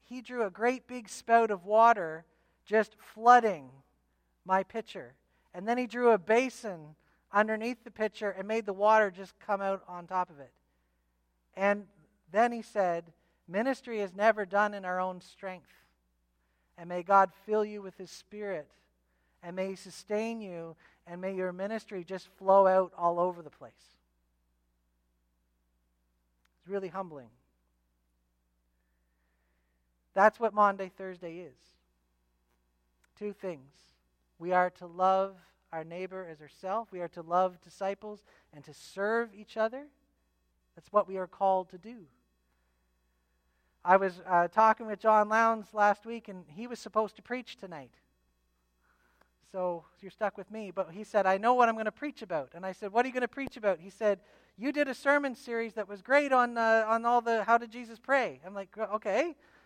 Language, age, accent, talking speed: English, 40-59, American, 170 wpm